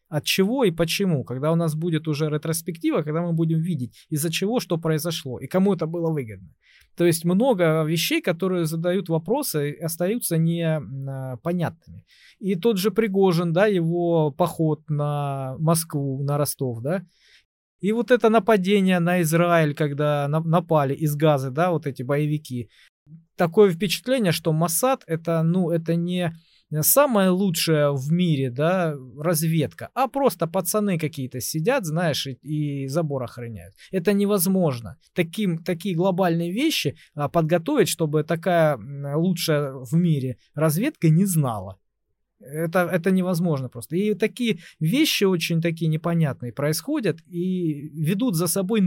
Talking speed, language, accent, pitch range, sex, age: 135 wpm, Russian, native, 150-185 Hz, male, 20-39